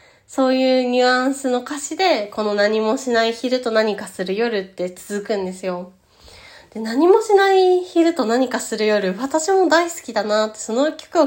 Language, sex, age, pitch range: Japanese, female, 20-39, 195-260 Hz